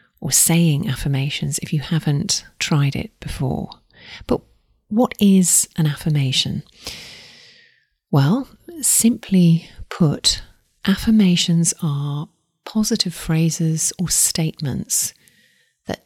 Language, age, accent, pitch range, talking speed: English, 40-59, British, 150-185 Hz, 85 wpm